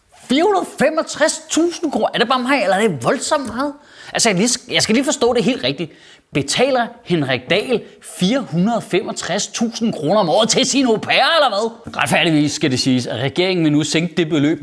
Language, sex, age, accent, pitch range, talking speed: Danish, male, 30-49, native, 160-265 Hz, 170 wpm